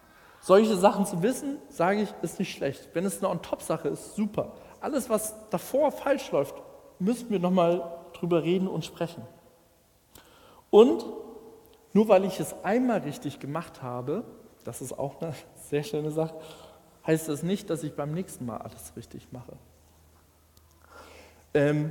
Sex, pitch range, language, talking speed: male, 145-190 Hz, German, 155 wpm